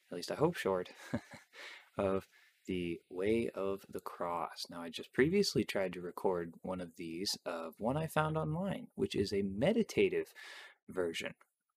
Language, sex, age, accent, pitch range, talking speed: English, male, 20-39, American, 95-155 Hz, 160 wpm